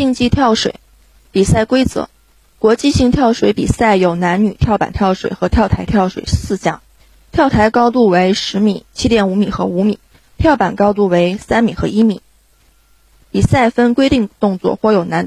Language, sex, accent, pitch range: Chinese, female, native, 185-230 Hz